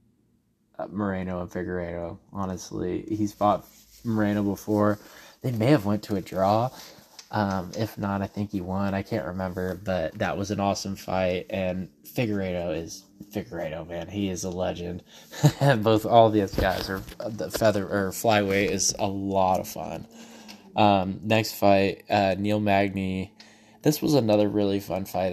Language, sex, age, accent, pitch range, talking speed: English, male, 10-29, American, 95-105 Hz, 160 wpm